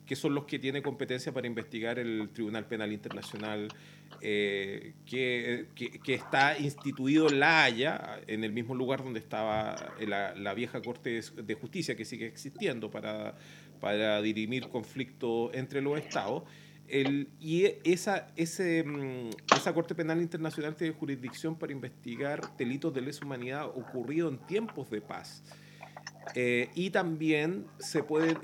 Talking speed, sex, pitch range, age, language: 140 wpm, male, 120-155 Hz, 40-59, Spanish